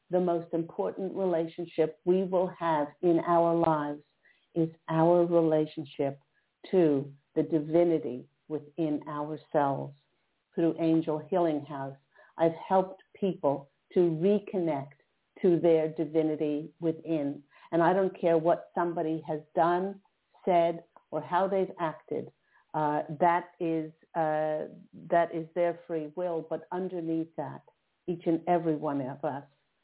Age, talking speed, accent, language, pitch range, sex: 50-69, 125 wpm, American, English, 155-185 Hz, female